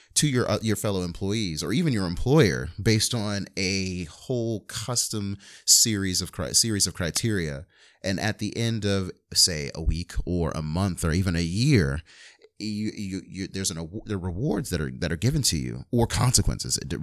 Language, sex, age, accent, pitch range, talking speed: English, male, 30-49, American, 85-110 Hz, 190 wpm